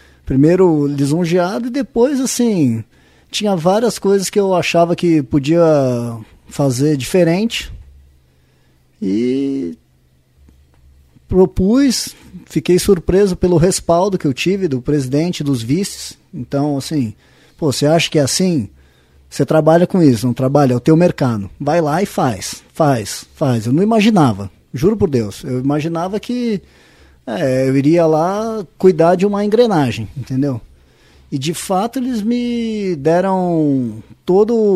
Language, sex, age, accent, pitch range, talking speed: Portuguese, male, 20-39, Brazilian, 130-190 Hz, 135 wpm